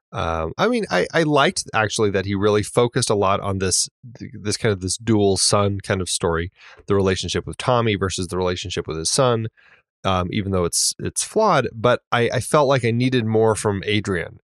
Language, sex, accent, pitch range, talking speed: English, male, American, 95-120 Hz, 210 wpm